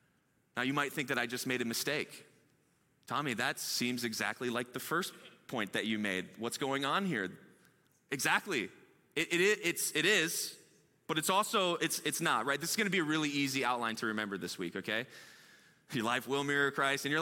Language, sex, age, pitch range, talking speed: English, male, 20-39, 125-175 Hz, 200 wpm